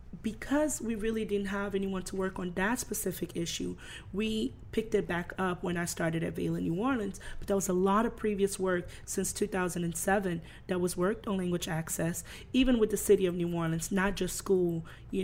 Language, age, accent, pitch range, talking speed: English, 30-49, American, 185-225 Hz, 205 wpm